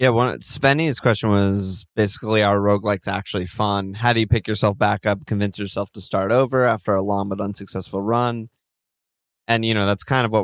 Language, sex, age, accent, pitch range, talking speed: English, male, 20-39, American, 100-110 Hz, 195 wpm